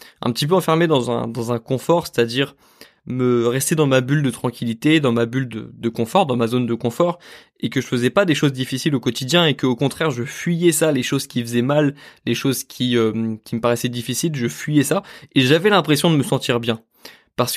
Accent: French